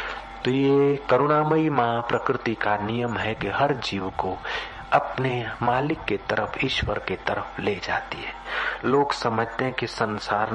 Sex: male